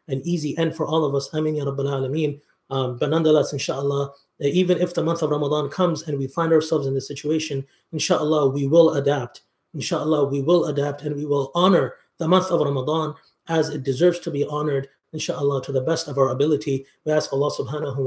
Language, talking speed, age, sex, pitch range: English, 205 wpm, 30-49, male, 140-170 Hz